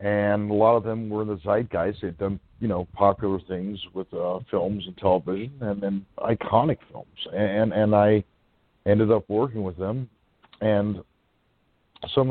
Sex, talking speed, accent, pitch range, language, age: male, 170 wpm, American, 85-105 Hz, English, 50-69